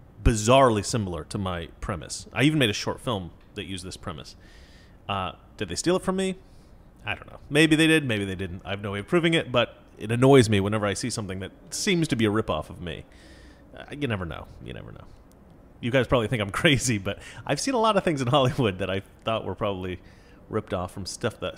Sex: male